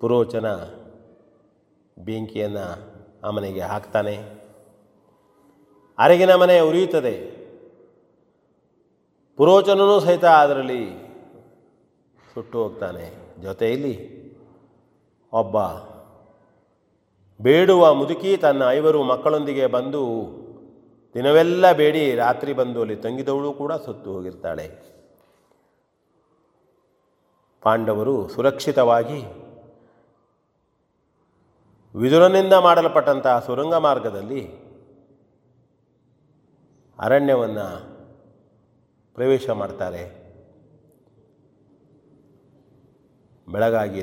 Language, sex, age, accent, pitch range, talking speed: Kannada, male, 40-59, native, 110-145 Hz, 55 wpm